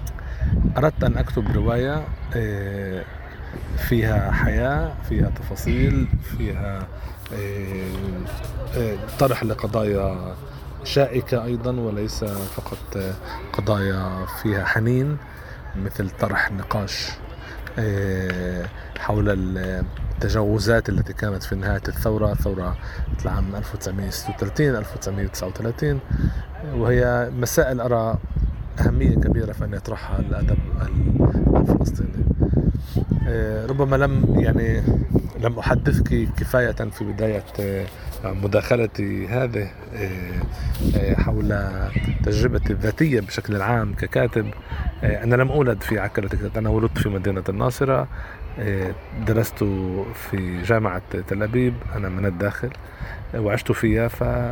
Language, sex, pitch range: Arabic, male, 95-115 Hz